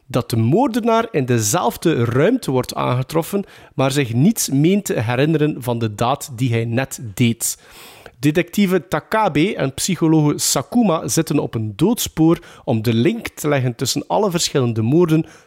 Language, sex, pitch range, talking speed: Dutch, male, 130-210 Hz, 150 wpm